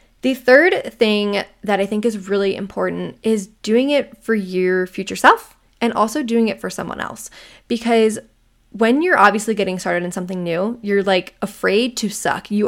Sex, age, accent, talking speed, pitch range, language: female, 10-29, American, 180 wpm, 195-230 Hz, English